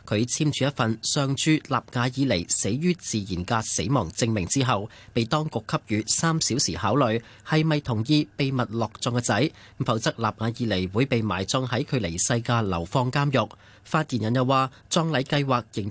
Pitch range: 105-140 Hz